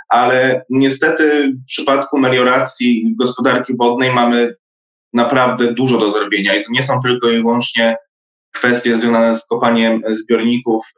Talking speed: 130 wpm